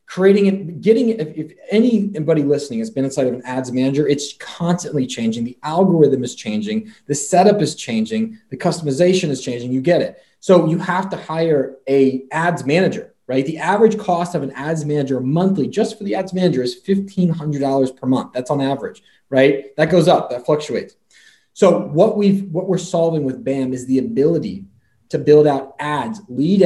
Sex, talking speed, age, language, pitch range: male, 190 wpm, 20-39, English, 135-180 Hz